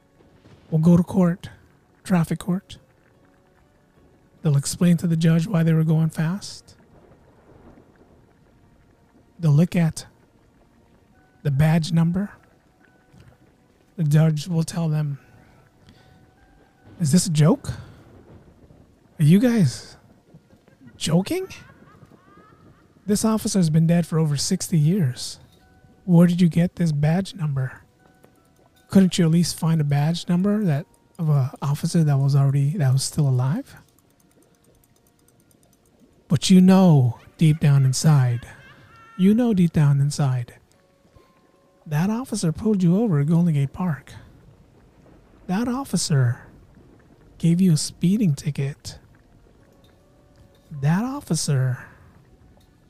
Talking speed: 110 wpm